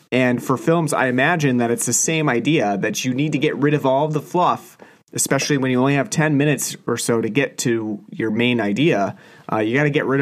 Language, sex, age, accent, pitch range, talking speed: English, male, 30-49, American, 120-165 Hz, 245 wpm